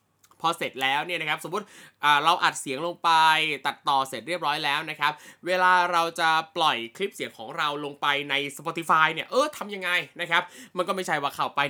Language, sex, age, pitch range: Thai, male, 20-39, 140-180 Hz